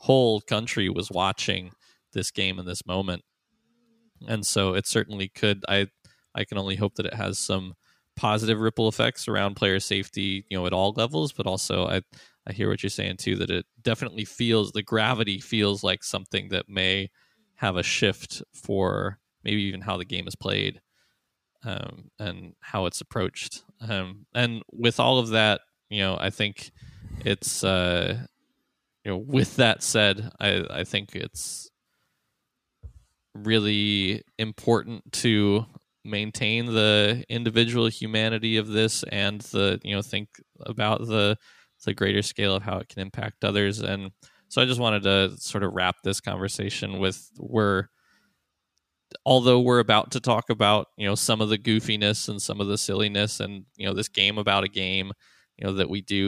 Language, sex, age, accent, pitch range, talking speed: English, male, 20-39, American, 95-110 Hz, 170 wpm